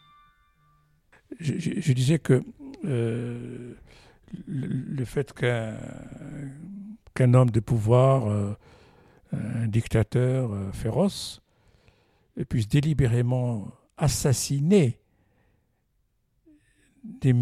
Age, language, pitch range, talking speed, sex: 60-79, French, 120-160 Hz, 80 wpm, male